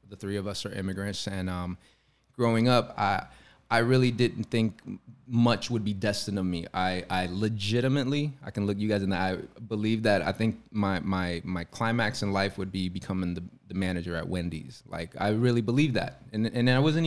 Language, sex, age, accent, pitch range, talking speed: English, male, 20-39, American, 95-115 Hz, 205 wpm